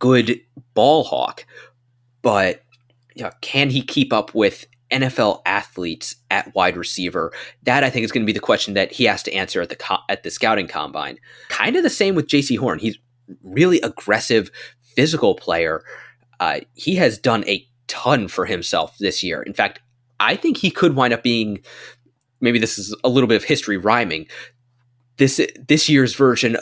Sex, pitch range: male, 110-130 Hz